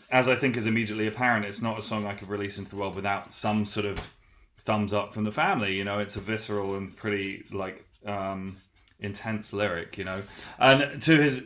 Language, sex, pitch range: English, male, 100-115 Hz